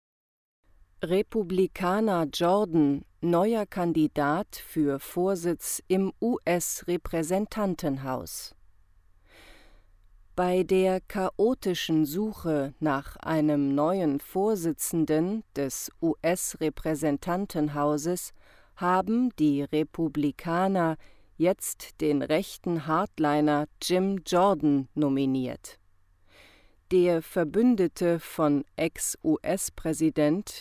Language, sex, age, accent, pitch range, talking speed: English, female, 40-59, German, 145-185 Hz, 65 wpm